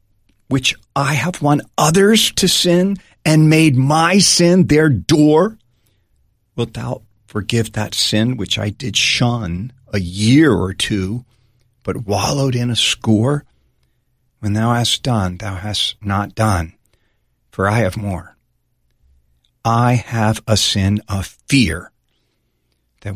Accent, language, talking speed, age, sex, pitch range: American, English, 130 wpm, 40-59, male, 85-120 Hz